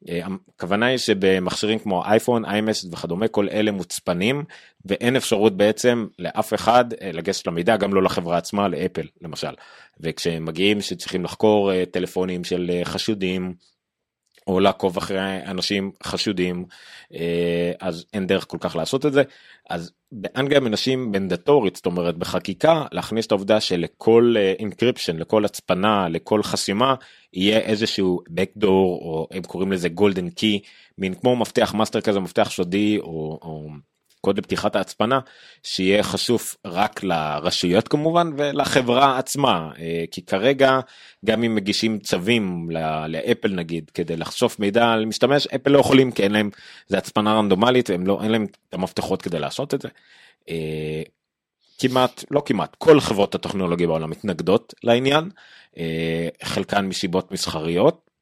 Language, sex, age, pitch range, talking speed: Hebrew, male, 30-49, 90-115 Hz, 135 wpm